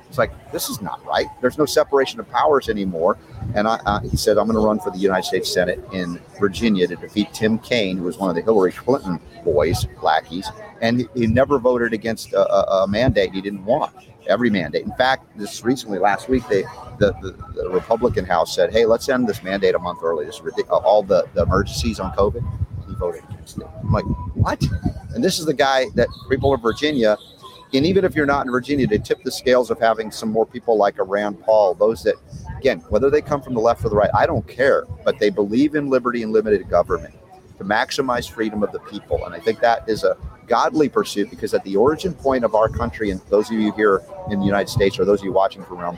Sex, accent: male, American